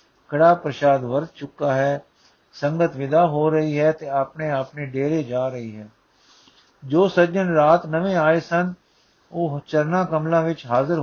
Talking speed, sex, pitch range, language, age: 150 wpm, male, 140-170 Hz, Punjabi, 50-69